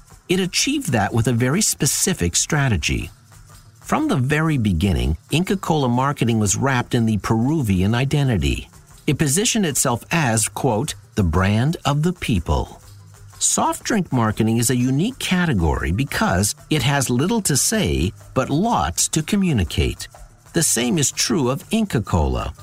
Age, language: 50-69, English